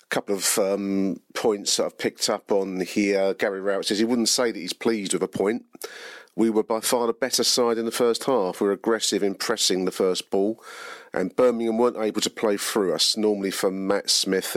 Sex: male